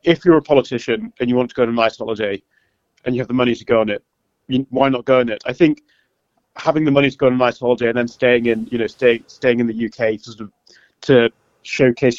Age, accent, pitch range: 30-49, British, 120-135 Hz